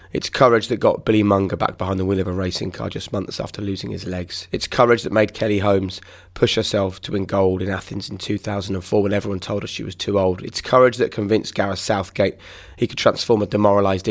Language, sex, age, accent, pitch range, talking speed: English, male, 20-39, British, 95-105 Hz, 230 wpm